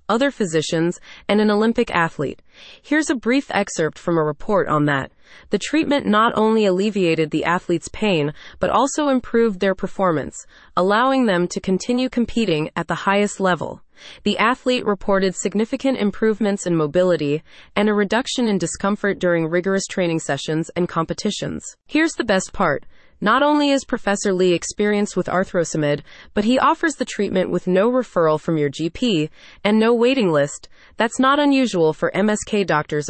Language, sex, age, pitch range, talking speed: English, female, 20-39, 170-230 Hz, 160 wpm